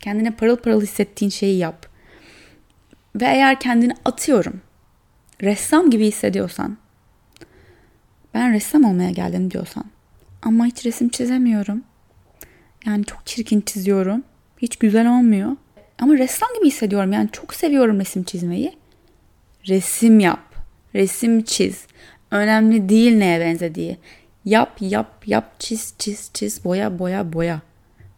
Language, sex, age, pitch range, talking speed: Turkish, female, 20-39, 180-235 Hz, 115 wpm